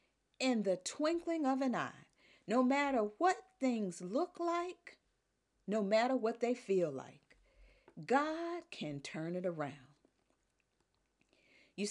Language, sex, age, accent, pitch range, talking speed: English, female, 50-69, American, 180-285 Hz, 120 wpm